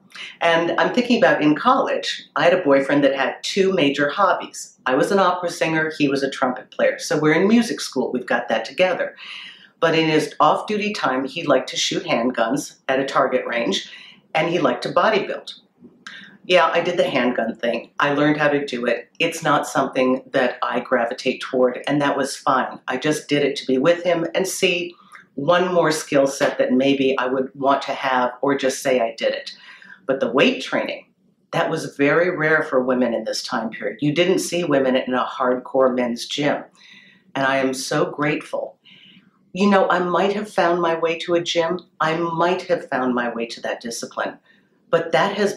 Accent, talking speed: American, 205 wpm